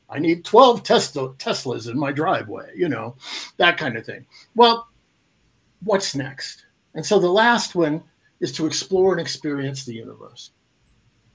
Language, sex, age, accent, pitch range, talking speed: English, male, 50-69, American, 140-200 Hz, 155 wpm